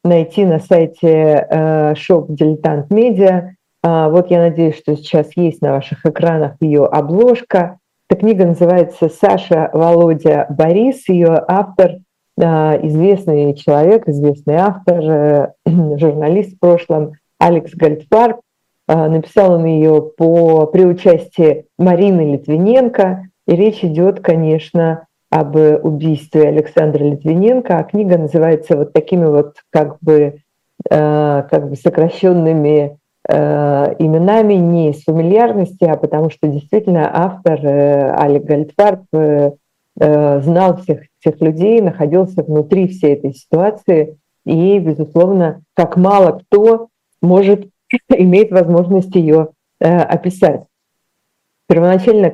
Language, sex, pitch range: Russian, female, 155-185 Hz